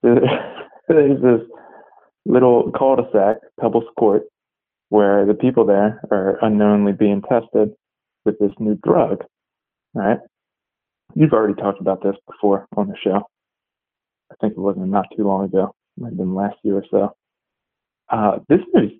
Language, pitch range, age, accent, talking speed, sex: English, 100-115 Hz, 20-39, American, 150 wpm, male